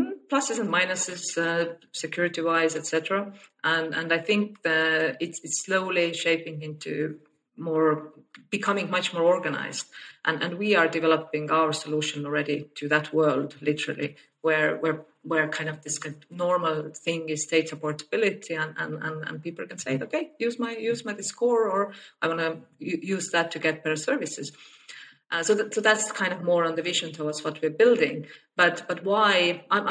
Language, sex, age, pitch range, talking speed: English, female, 30-49, 155-180 Hz, 180 wpm